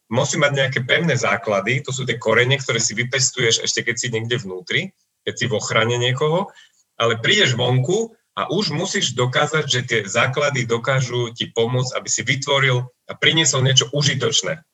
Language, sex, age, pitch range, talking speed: Slovak, male, 30-49, 110-145 Hz, 165 wpm